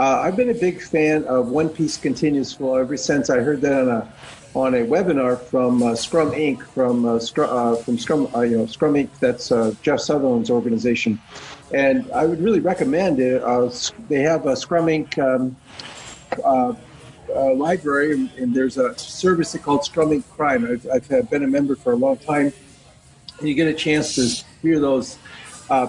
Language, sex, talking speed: English, male, 185 wpm